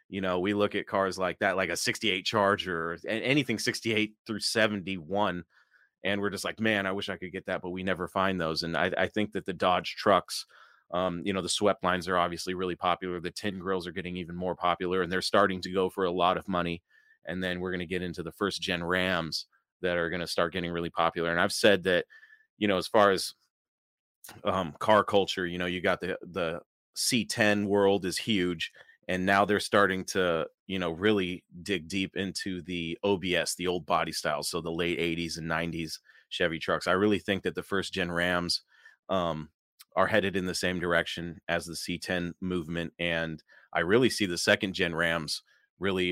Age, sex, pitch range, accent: 30-49, male, 90-100 Hz, American